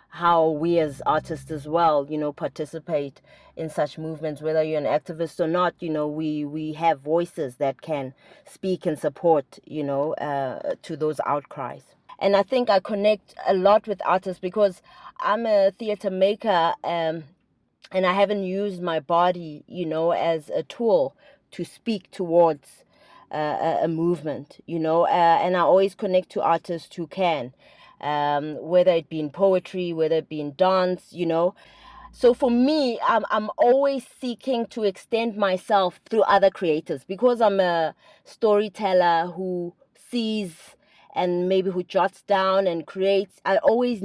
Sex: female